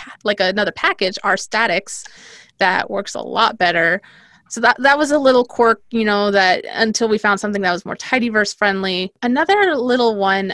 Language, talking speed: English, 180 wpm